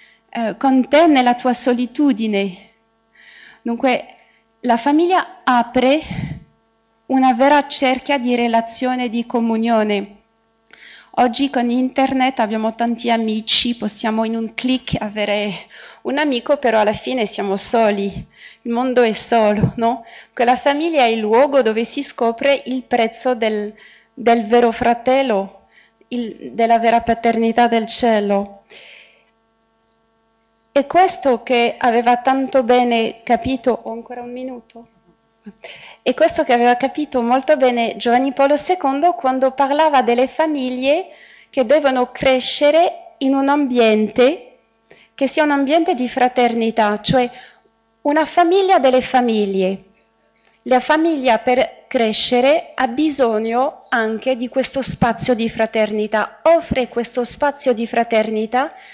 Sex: female